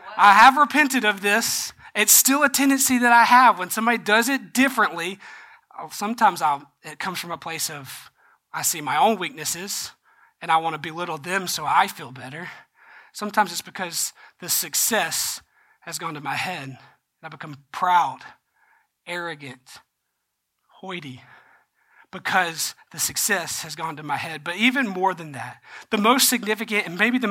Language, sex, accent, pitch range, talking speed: English, male, American, 160-210 Hz, 165 wpm